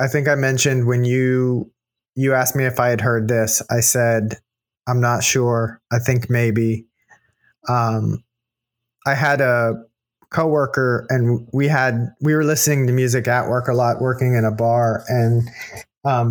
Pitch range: 115-135 Hz